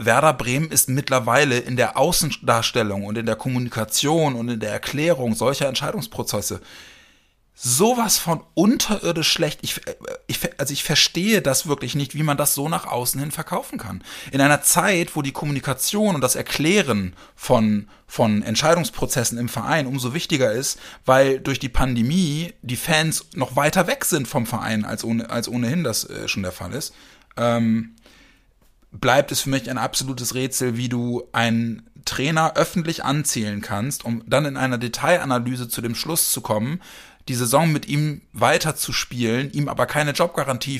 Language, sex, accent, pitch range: German, male, German, 120-155 Hz